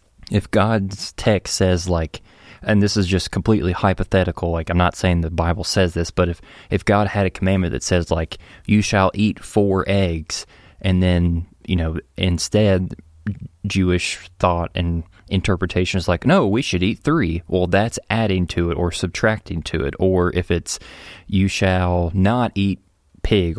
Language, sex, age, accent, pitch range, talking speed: English, male, 20-39, American, 85-95 Hz, 170 wpm